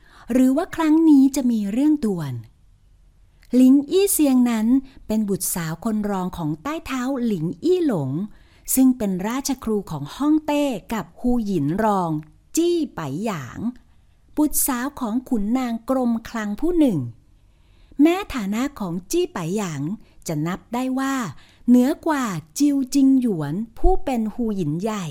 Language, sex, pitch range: Thai, female, 180-270 Hz